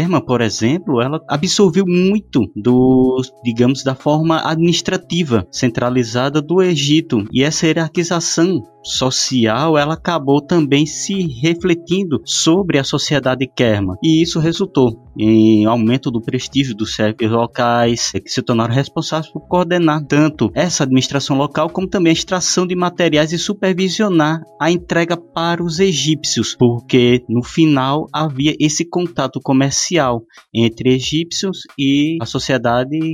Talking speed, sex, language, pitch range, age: 125 wpm, male, Portuguese, 115-160 Hz, 20-39